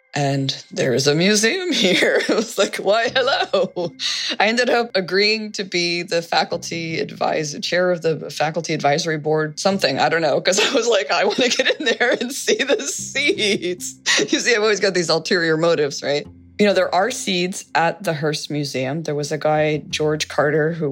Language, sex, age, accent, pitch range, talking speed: English, female, 20-39, American, 145-185 Hz, 200 wpm